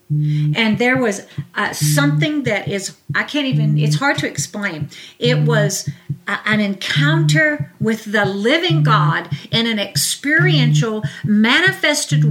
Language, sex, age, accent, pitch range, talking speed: English, female, 50-69, American, 195-260 Hz, 130 wpm